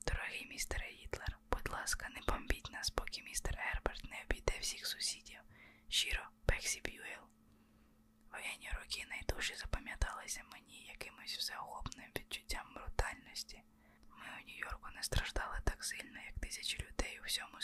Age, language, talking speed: 20-39, Ukrainian, 135 wpm